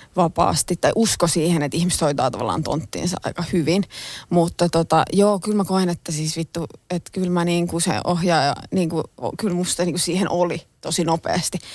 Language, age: Finnish, 20-39